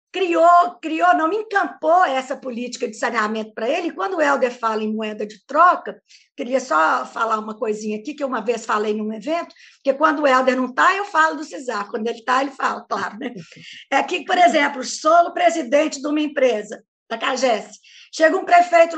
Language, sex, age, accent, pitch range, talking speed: Portuguese, female, 50-69, Brazilian, 235-325 Hz, 200 wpm